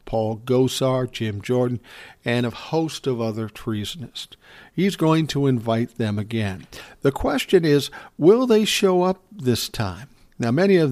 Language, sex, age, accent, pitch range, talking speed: English, male, 50-69, American, 110-130 Hz, 155 wpm